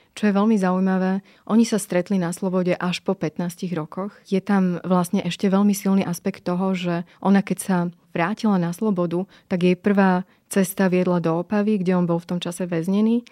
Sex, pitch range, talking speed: female, 175-195 Hz, 190 wpm